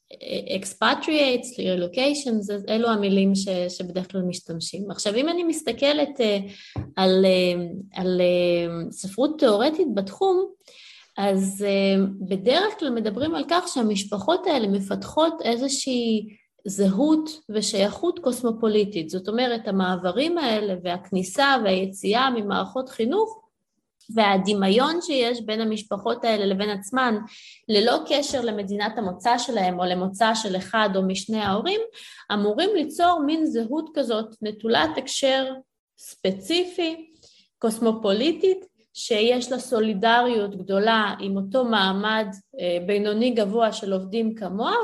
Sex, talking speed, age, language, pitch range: female, 105 wpm, 20-39, Hebrew, 195-270 Hz